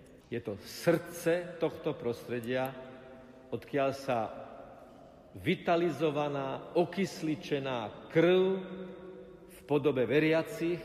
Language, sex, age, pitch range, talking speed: Slovak, male, 50-69, 125-155 Hz, 75 wpm